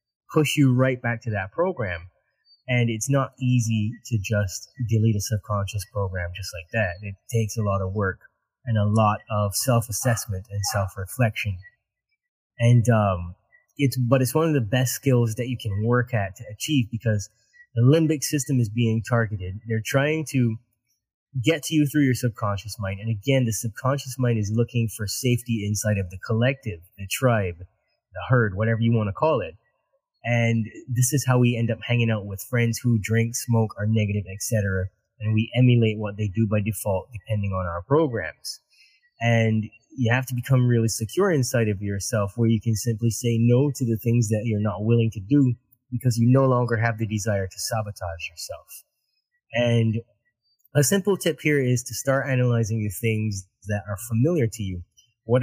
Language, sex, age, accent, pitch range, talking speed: English, male, 20-39, American, 105-125 Hz, 185 wpm